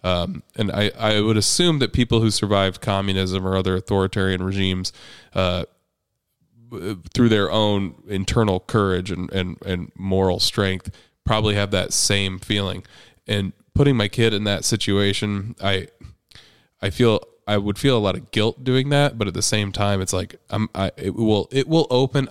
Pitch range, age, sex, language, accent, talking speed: 95-115 Hz, 20-39, male, English, American, 170 wpm